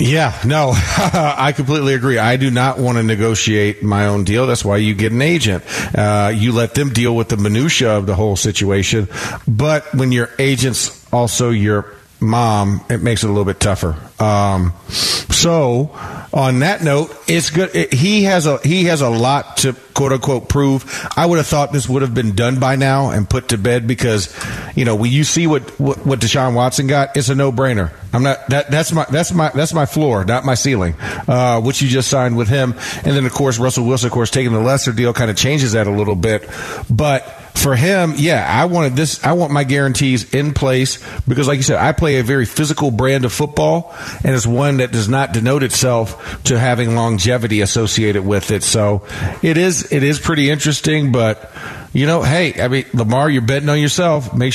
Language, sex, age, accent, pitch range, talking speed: English, male, 40-59, American, 110-145 Hz, 210 wpm